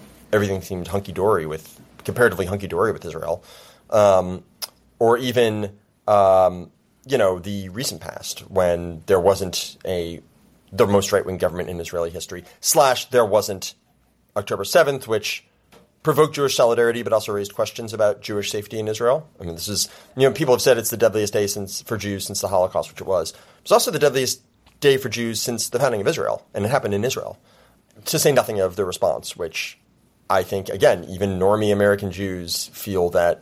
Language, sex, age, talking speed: English, male, 30-49, 190 wpm